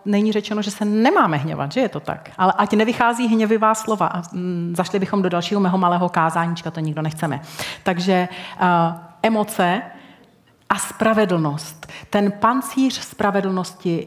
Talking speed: 135 wpm